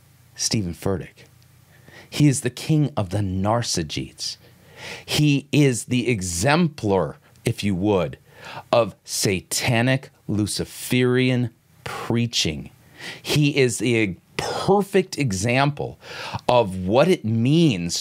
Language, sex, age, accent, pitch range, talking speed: English, male, 40-59, American, 115-150 Hz, 95 wpm